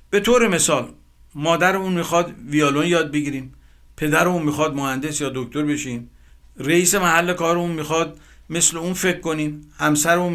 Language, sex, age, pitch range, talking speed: Persian, male, 60-79, 135-180 Hz, 135 wpm